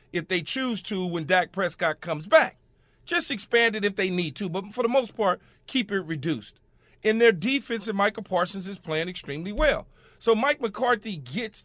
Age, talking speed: 40-59, 190 wpm